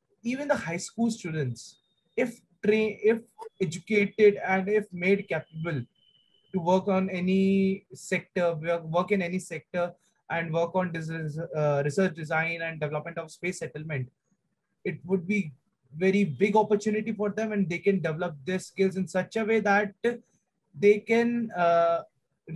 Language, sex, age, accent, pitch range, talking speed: English, male, 20-39, Indian, 165-205 Hz, 150 wpm